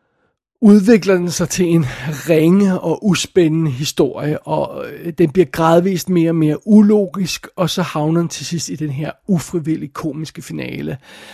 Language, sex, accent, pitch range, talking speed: Danish, male, native, 155-180 Hz, 155 wpm